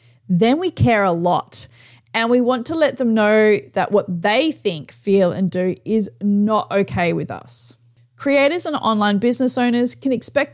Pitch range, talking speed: 180-250 Hz, 175 wpm